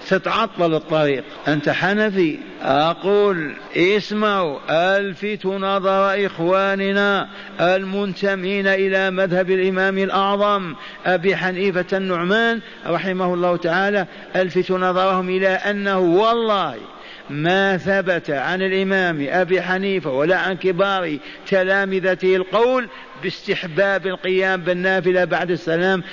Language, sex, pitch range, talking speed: Arabic, male, 180-195 Hz, 95 wpm